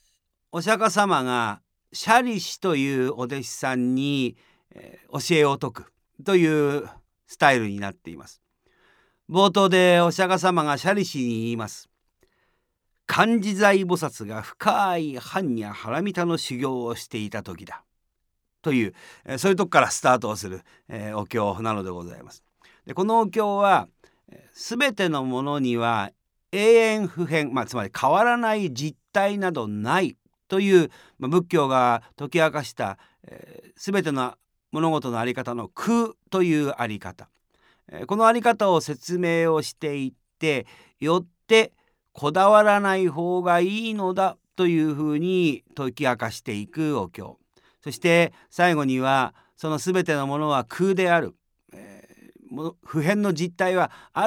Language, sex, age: Japanese, male, 50-69